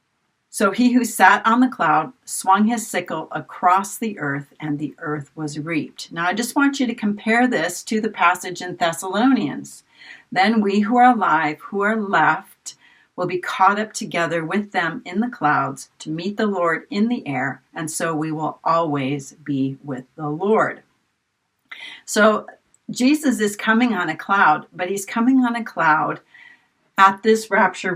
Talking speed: 175 wpm